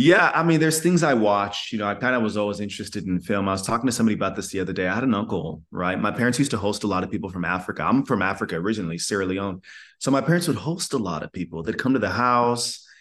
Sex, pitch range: male, 90-110 Hz